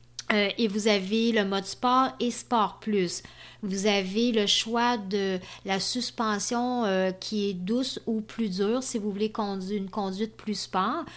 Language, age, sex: French, 30-49, female